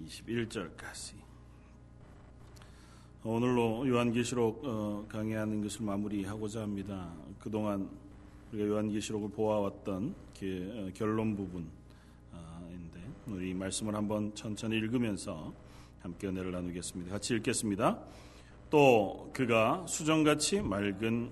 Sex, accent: male, native